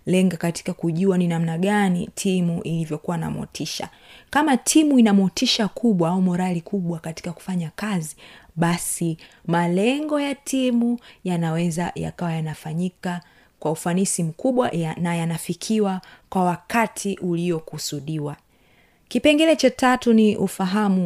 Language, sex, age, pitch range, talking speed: Swahili, female, 30-49, 175-240 Hz, 115 wpm